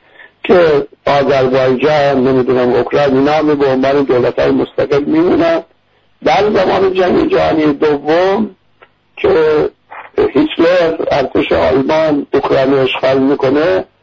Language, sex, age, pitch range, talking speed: English, male, 60-79, 130-190 Hz, 105 wpm